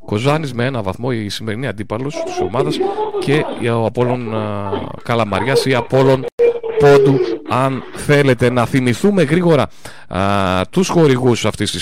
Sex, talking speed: male, 125 wpm